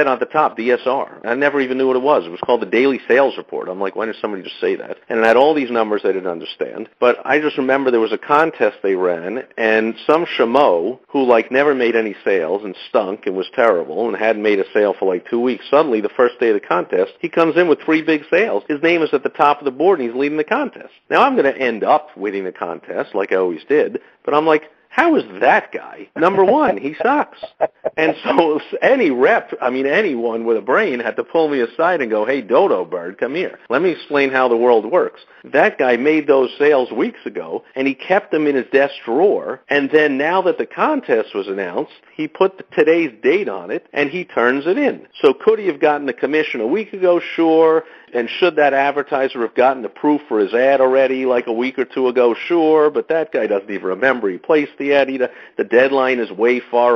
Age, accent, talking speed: 50-69, American, 240 wpm